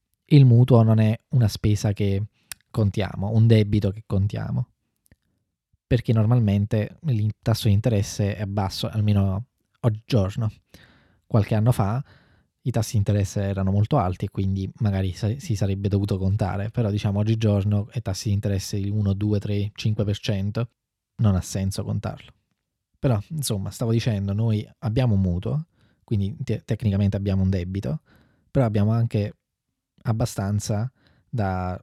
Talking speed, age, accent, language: 140 wpm, 20-39, native, Italian